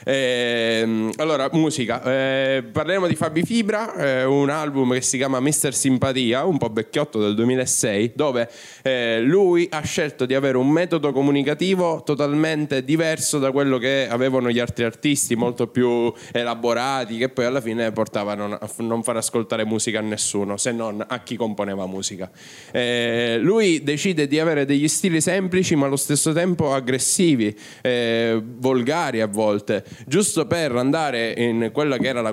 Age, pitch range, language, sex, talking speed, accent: 10-29, 115-150 Hz, Italian, male, 160 wpm, native